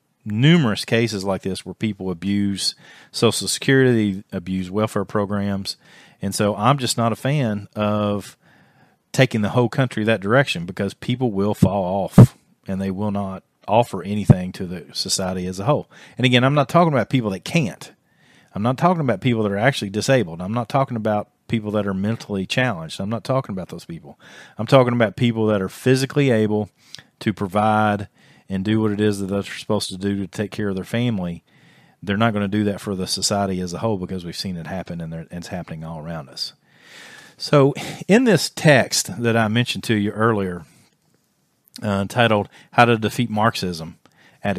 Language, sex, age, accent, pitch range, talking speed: English, male, 40-59, American, 95-120 Hz, 190 wpm